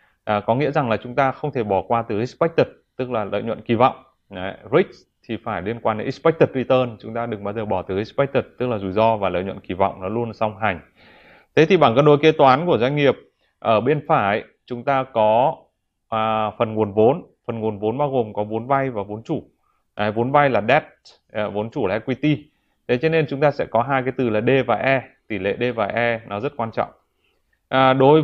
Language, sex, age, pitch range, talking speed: Vietnamese, male, 20-39, 110-140 Hz, 240 wpm